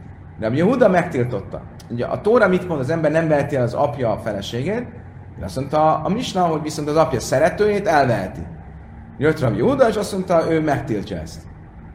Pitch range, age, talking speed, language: 100-160 Hz, 30-49, 175 wpm, Hungarian